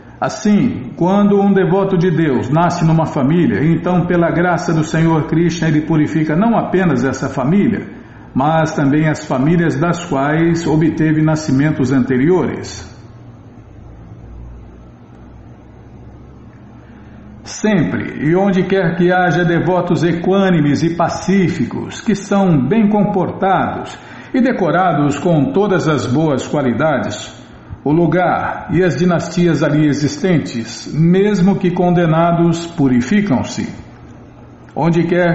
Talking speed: 110 wpm